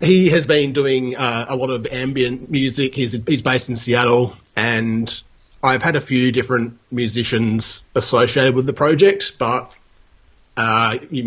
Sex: male